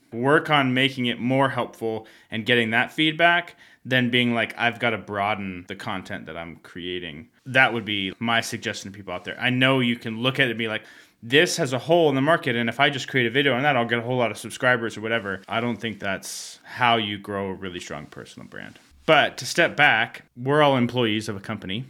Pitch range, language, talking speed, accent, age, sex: 110-130 Hz, English, 240 wpm, American, 20-39, male